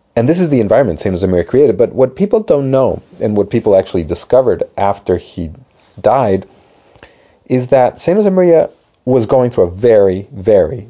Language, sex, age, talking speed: English, male, 40-59, 170 wpm